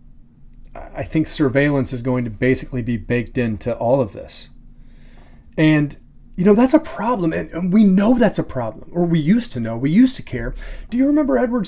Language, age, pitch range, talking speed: English, 30-49, 125-155 Hz, 200 wpm